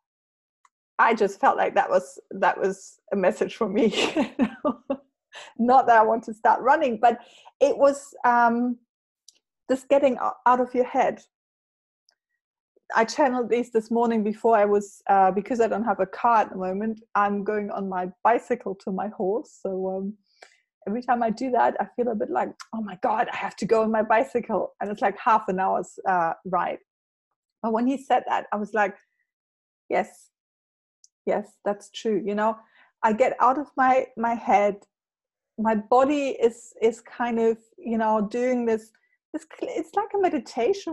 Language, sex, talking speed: English, female, 175 wpm